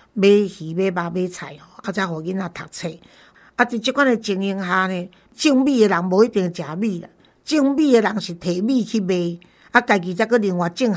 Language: Chinese